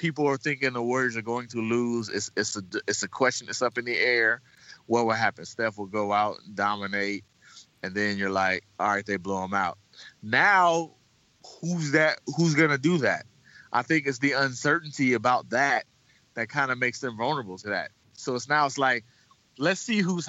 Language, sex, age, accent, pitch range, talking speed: English, male, 30-49, American, 120-165 Hz, 205 wpm